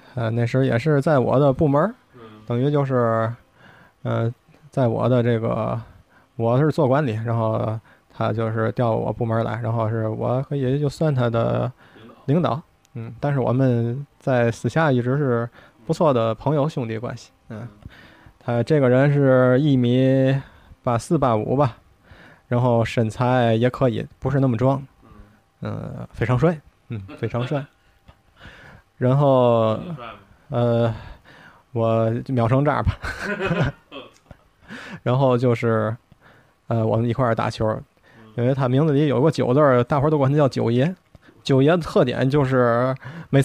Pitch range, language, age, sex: 115-135 Hz, Chinese, 20-39, male